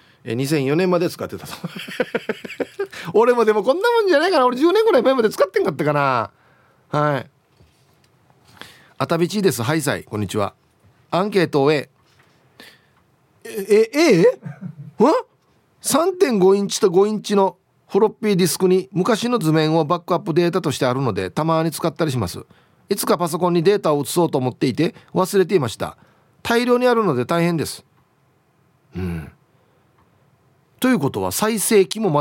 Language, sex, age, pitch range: Japanese, male, 40-59, 140-215 Hz